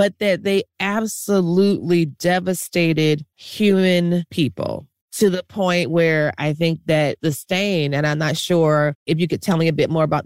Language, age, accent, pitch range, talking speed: English, 30-49, American, 155-210 Hz, 170 wpm